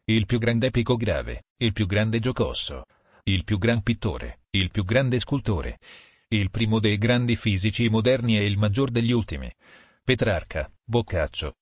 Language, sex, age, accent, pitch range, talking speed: Italian, male, 40-59, native, 100-120 Hz, 155 wpm